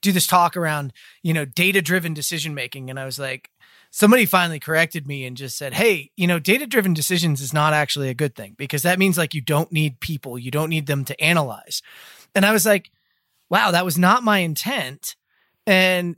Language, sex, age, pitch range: English, male, 30-49, 150-195 Hz